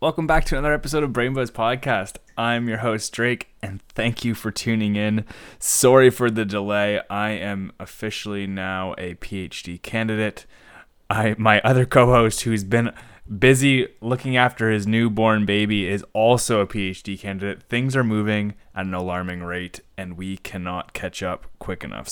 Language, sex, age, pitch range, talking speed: English, male, 20-39, 95-115 Hz, 165 wpm